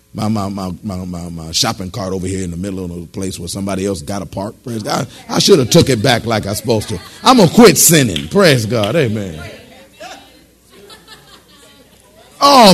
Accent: American